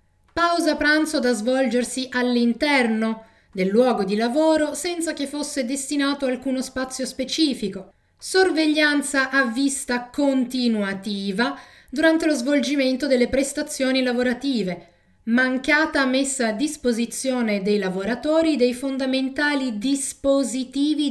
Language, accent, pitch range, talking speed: Italian, native, 230-295 Hz, 100 wpm